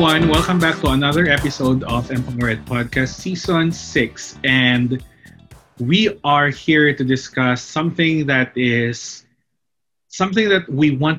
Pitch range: 125-150 Hz